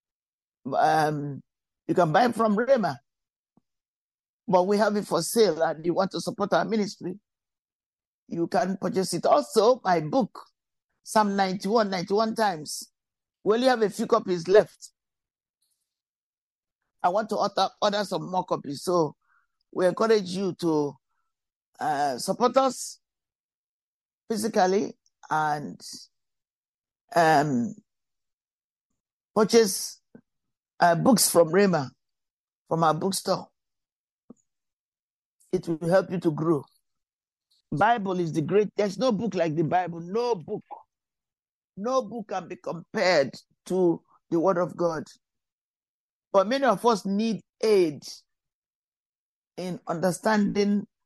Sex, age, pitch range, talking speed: male, 50-69, 170-220 Hz, 120 wpm